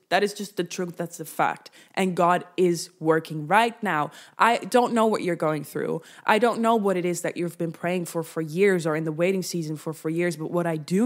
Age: 20-39